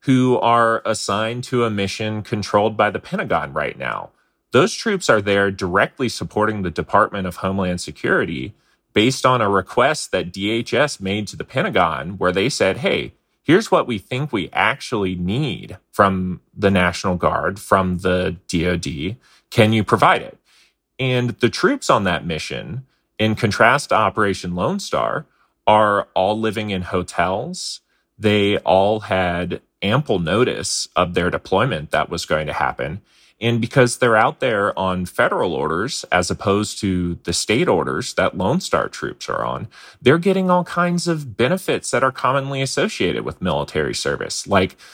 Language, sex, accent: English, male, American